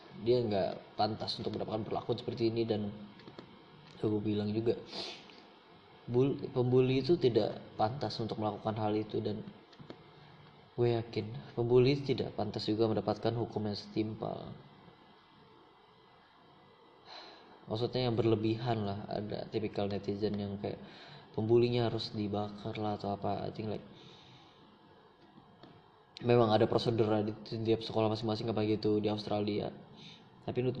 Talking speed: 125 wpm